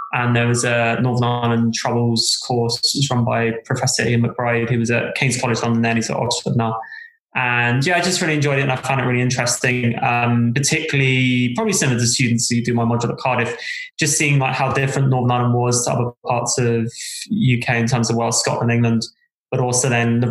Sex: male